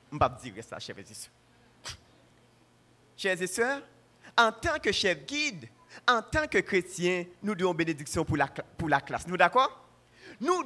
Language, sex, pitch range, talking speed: French, male, 145-240 Hz, 170 wpm